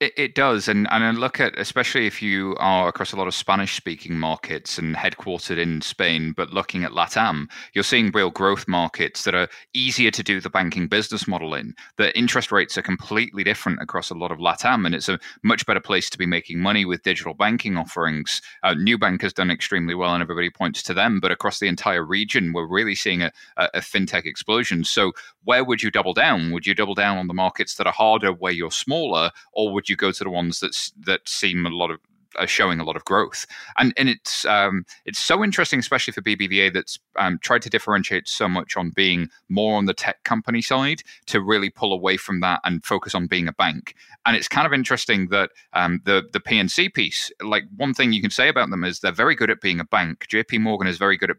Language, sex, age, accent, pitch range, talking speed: English, male, 30-49, British, 90-105 Hz, 230 wpm